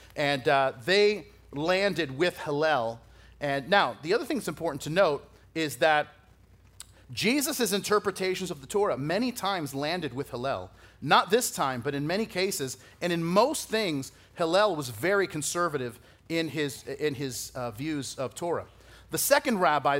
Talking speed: 160 wpm